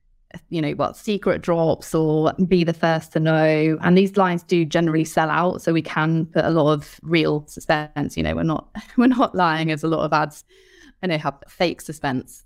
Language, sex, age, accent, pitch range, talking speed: English, female, 20-39, British, 155-175 Hz, 210 wpm